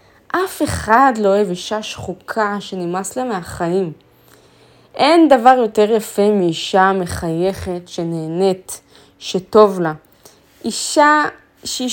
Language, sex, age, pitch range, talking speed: Hebrew, female, 20-39, 190-255 Hz, 100 wpm